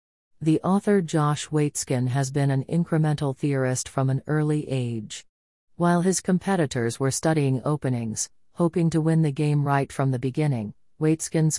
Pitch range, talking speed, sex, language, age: 130-160 Hz, 150 wpm, female, English, 40-59